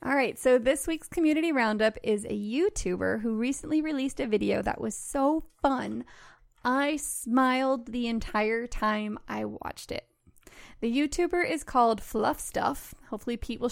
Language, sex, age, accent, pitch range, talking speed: English, female, 20-39, American, 230-295 Hz, 155 wpm